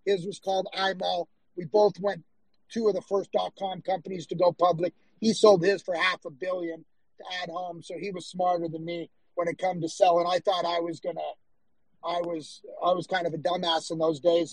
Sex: male